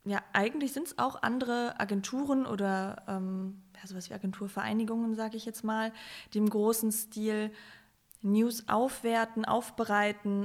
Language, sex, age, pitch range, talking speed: German, female, 20-39, 205-225 Hz, 145 wpm